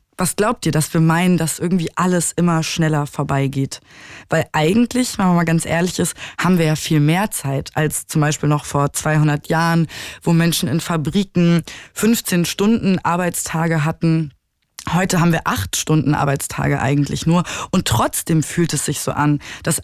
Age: 20-39